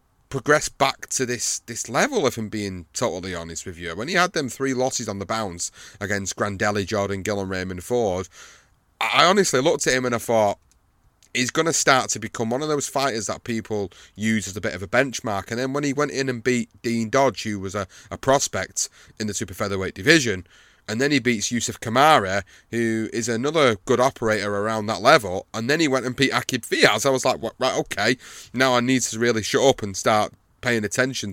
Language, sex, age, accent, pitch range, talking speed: English, male, 30-49, British, 105-130 Hz, 220 wpm